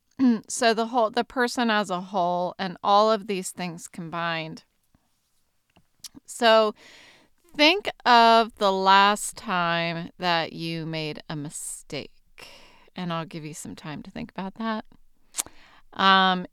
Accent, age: American, 30-49